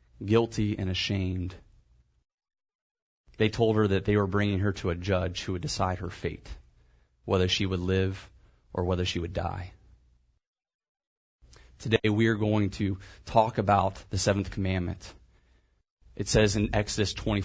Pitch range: 95-115 Hz